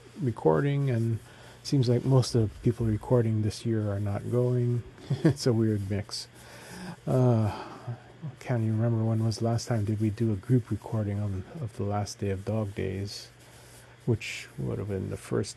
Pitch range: 100-120 Hz